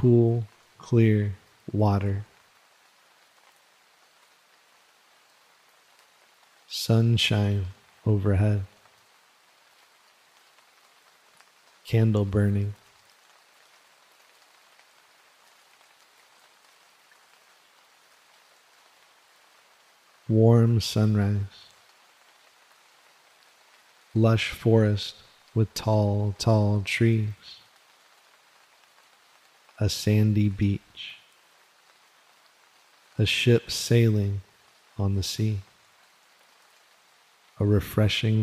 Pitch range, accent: 100-110 Hz, American